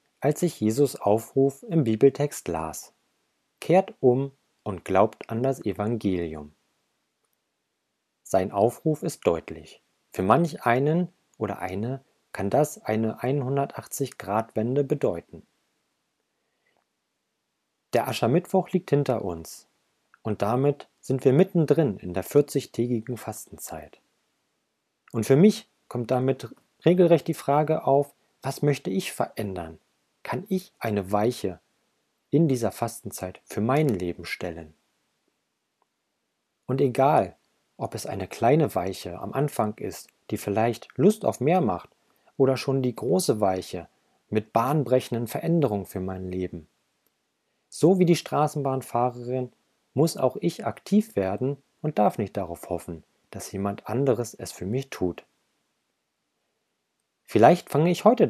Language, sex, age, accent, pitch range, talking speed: German, male, 40-59, German, 100-145 Hz, 120 wpm